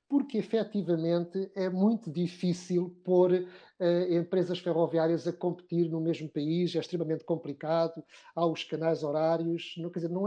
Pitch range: 170-210 Hz